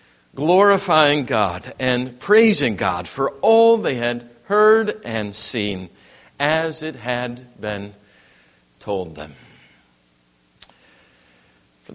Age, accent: 50-69, American